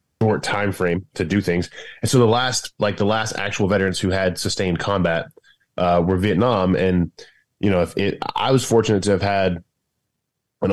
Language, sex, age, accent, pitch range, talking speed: English, male, 20-39, American, 90-105 Hz, 190 wpm